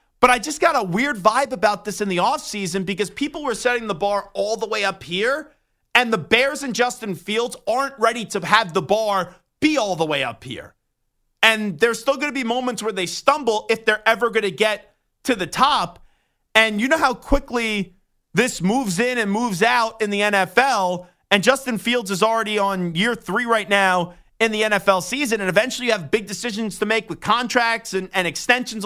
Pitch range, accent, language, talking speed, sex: 200-245 Hz, American, English, 210 wpm, male